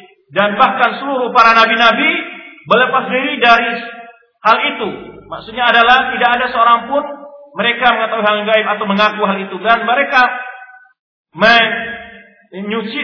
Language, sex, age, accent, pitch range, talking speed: Indonesian, male, 40-59, native, 215-270 Hz, 130 wpm